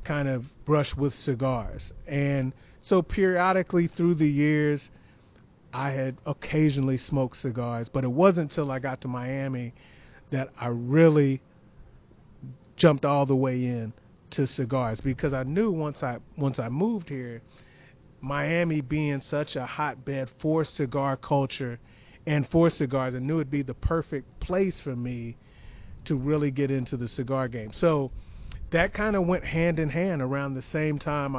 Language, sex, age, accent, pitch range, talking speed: English, male, 40-59, American, 125-150 Hz, 155 wpm